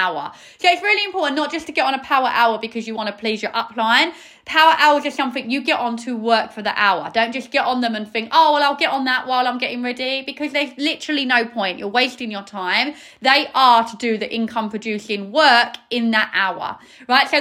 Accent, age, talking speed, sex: British, 30-49, 240 wpm, female